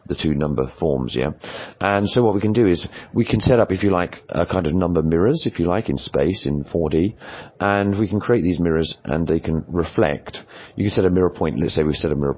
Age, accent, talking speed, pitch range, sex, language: 30-49, British, 255 wpm, 75-90 Hz, male, English